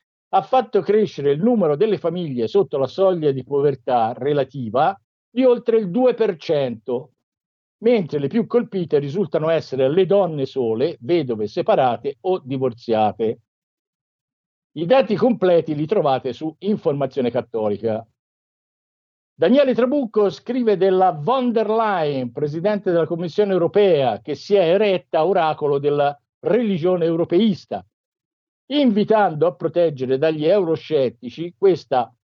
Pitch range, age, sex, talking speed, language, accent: 135-205 Hz, 50-69, male, 115 wpm, Italian, native